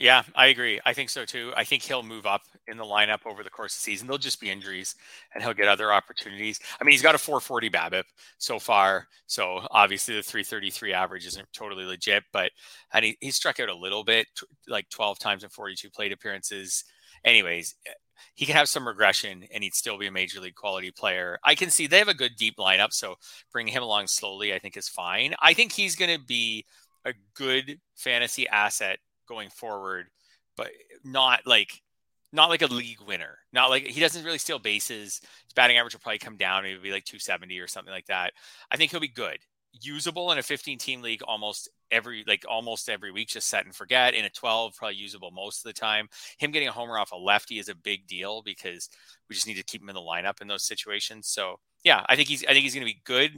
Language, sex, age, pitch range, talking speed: English, male, 30-49, 100-130 Hz, 230 wpm